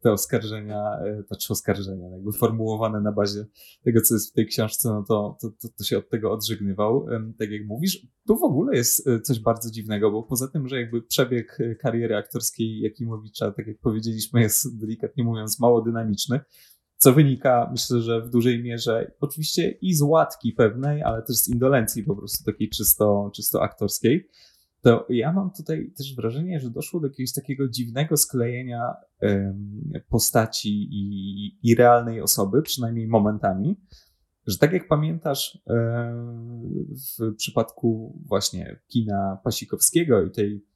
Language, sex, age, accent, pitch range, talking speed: Polish, male, 20-39, native, 105-125 Hz, 155 wpm